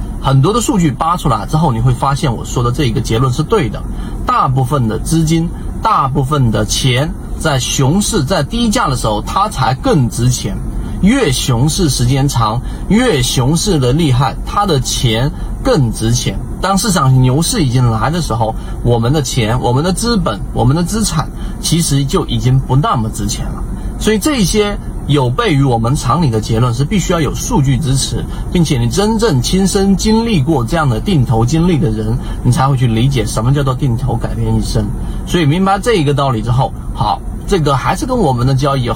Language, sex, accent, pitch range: Chinese, male, native, 115-160 Hz